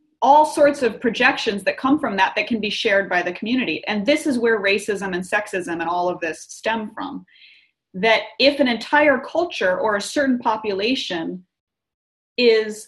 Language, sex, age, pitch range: English, female, 30-49, 195-250 Hz